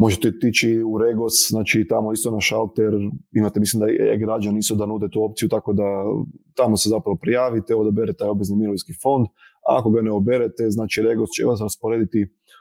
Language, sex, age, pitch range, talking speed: Croatian, male, 30-49, 105-115 Hz, 195 wpm